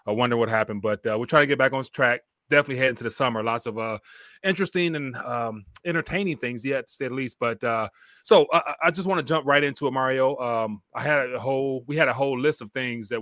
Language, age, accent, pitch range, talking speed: English, 30-49, American, 115-150 Hz, 265 wpm